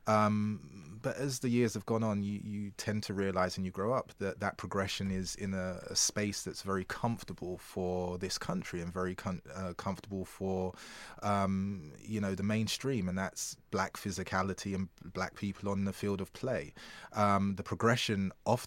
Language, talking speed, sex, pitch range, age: English, 185 wpm, male, 90-100 Hz, 20-39